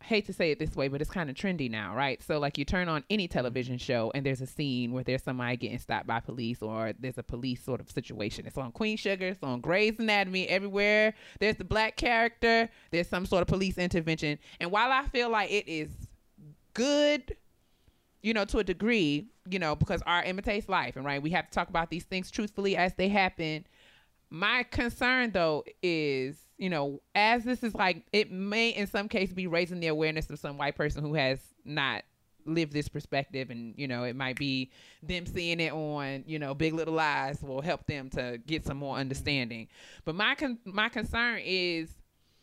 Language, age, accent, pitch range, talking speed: English, 20-39, American, 140-195 Hz, 210 wpm